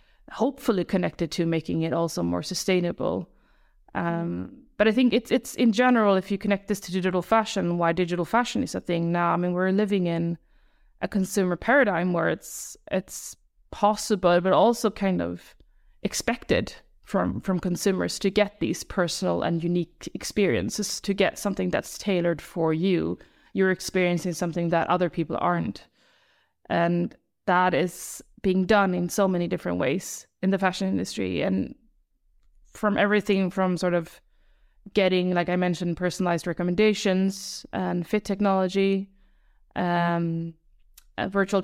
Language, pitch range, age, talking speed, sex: English, 175-195 Hz, 30-49, 150 wpm, female